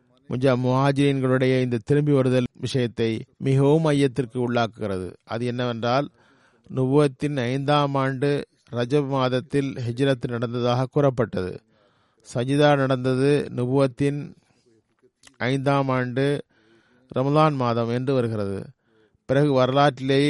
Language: Tamil